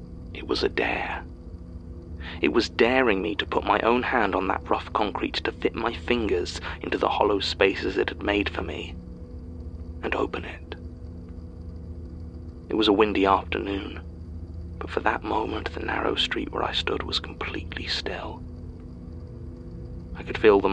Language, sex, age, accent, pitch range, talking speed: English, male, 30-49, British, 80-90 Hz, 160 wpm